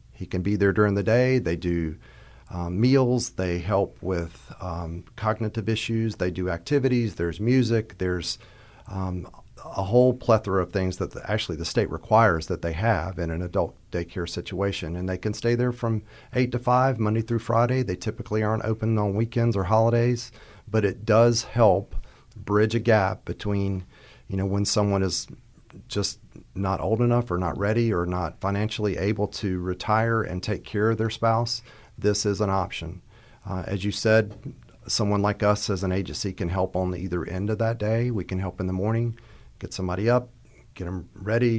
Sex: male